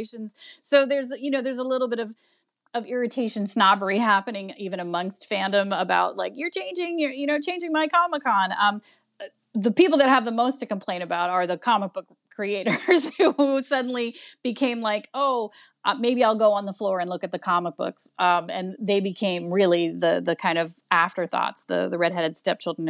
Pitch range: 175-235 Hz